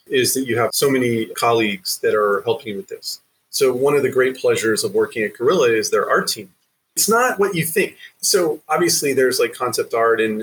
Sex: male